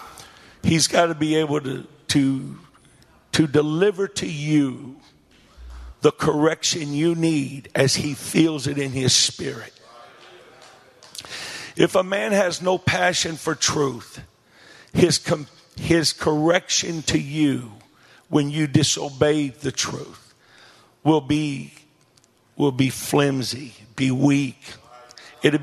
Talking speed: 110 wpm